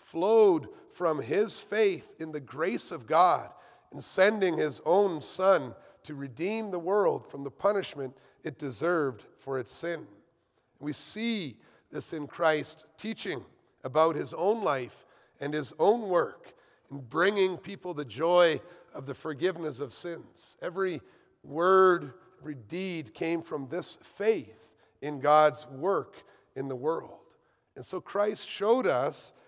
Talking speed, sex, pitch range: 140 wpm, male, 155-220 Hz